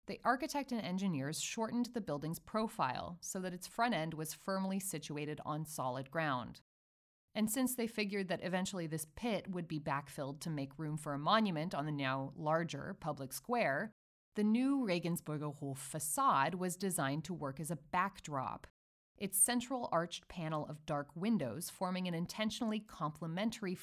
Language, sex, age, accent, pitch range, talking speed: English, female, 30-49, American, 145-200 Hz, 165 wpm